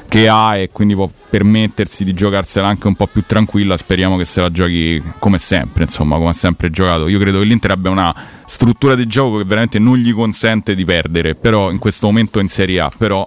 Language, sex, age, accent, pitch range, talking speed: Italian, male, 30-49, native, 95-110 Hz, 215 wpm